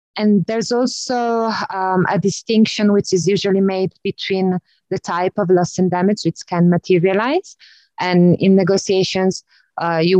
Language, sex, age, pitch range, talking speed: English, female, 20-39, 170-200 Hz, 145 wpm